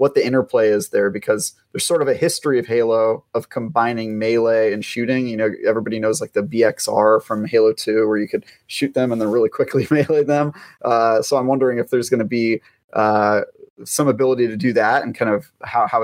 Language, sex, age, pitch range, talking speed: English, male, 30-49, 110-135 Hz, 220 wpm